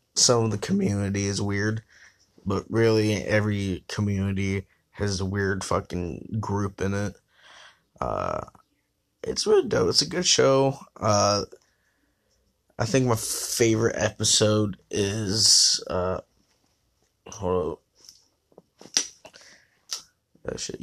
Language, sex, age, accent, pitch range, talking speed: English, male, 20-39, American, 100-115 Hz, 105 wpm